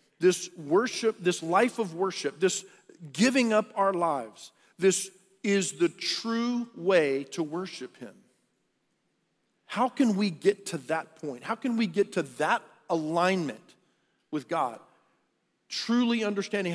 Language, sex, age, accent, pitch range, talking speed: English, male, 50-69, American, 160-200 Hz, 135 wpm